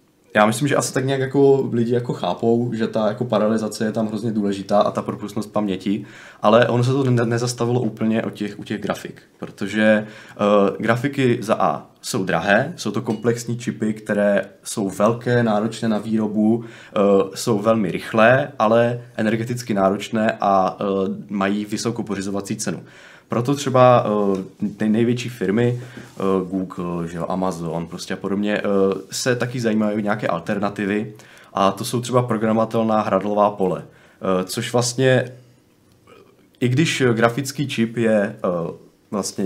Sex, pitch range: male, 105-120 Hz